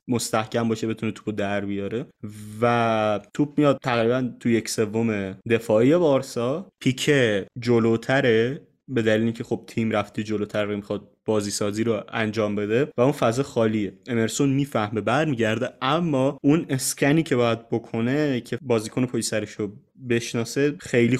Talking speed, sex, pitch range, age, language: 145 wpm, male, 110-130 Hz, 20-39, Persian